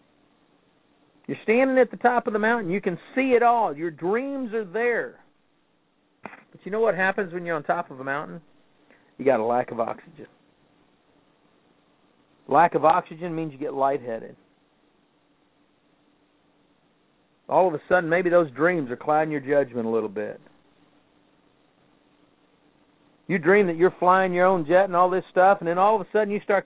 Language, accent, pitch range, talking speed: English, American, 155-215 Hz, 170 wpm